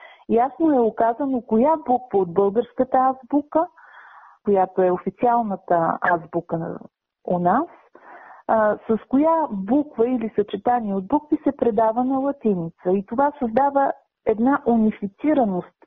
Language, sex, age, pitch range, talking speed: Bulgarian, female, 40-59, 200-265 Hz, 115 wpm